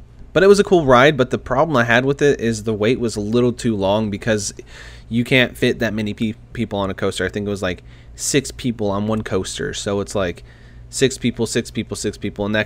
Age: 20-39